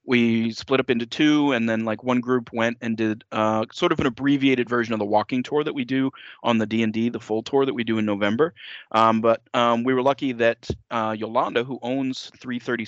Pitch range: 110-120 Hz